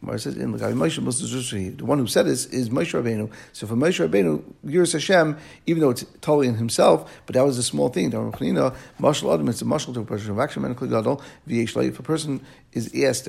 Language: English